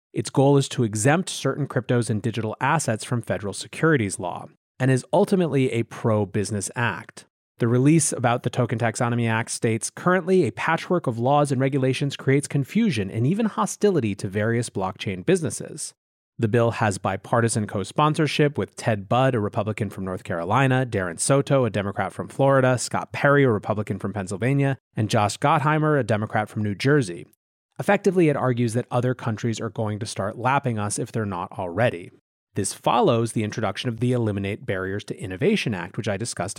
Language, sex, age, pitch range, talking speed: English, male, 30-49, 105-140 Hz, 175 wpm